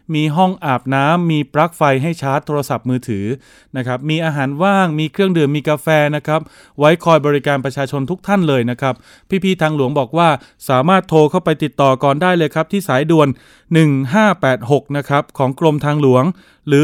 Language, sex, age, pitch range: Thai, male, 20-39, 135-170 Hz